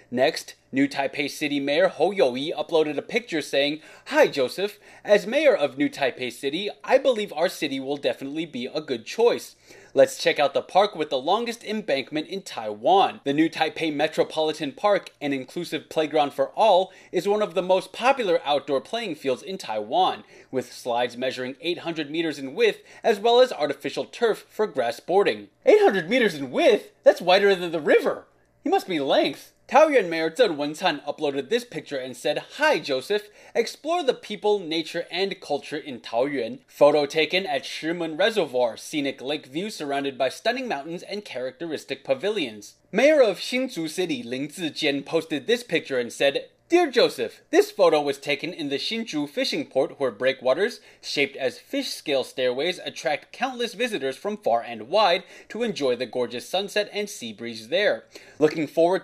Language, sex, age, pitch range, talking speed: English, male, 30-49, 145-240 Hz, 175 wpm